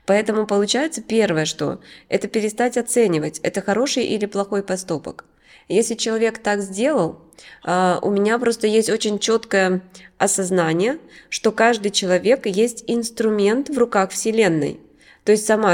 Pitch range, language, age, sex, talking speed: 185-225 Hz, Russian, 20-39, female, 130 wpm